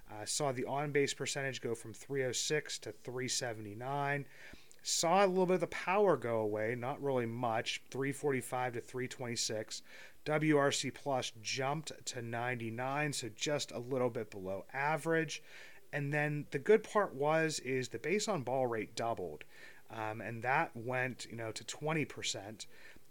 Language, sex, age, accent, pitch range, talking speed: English, male, 30-49, American, 115-140 Hz, 155 wpm